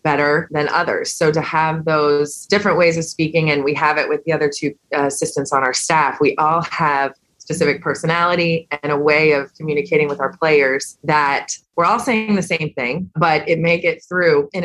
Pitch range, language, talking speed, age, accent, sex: 150-175 Hz, English, 200 wpm, 20-39, American, female